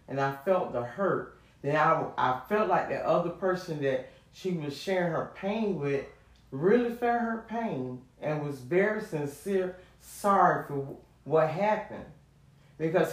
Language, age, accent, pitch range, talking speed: English, 40-59, American, 135-180 Hz, 150 wpm